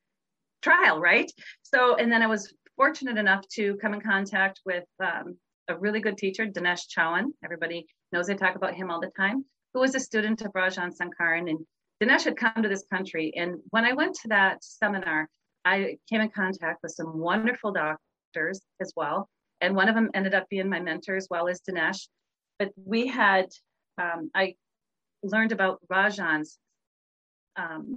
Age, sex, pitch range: 40-59, female, 180-230 Hz